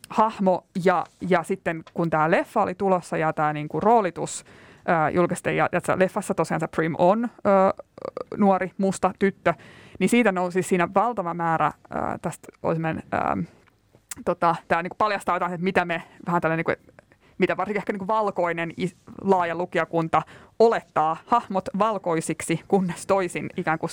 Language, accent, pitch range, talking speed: Finnish, native, 165-195 Hz, 155 wpm